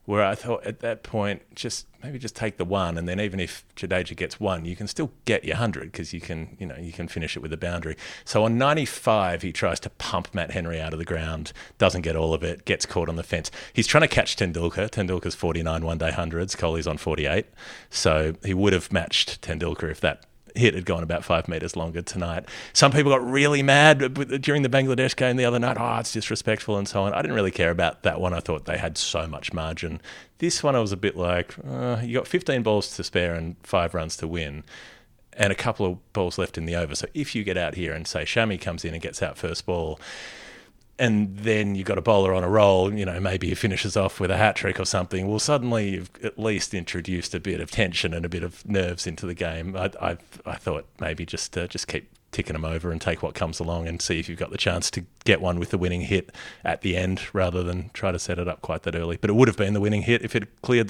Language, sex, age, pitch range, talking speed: English, male, 30-49, 85-110 Hz, 255 wpm